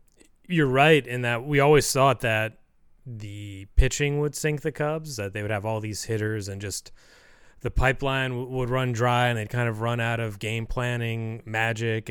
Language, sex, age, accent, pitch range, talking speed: English, male, 30-49, American, 105-125 Hz, 195 wpm